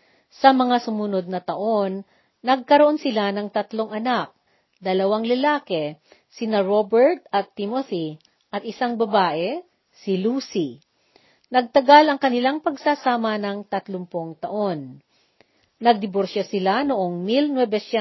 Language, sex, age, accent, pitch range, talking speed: Filipino, female, 40-59, native, 190-260 Hz, 105 wpm